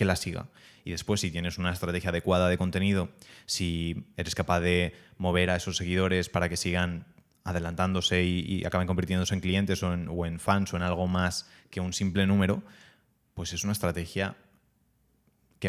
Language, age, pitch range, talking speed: Spanish, 20-39, 90-100 Hz, 185 wpm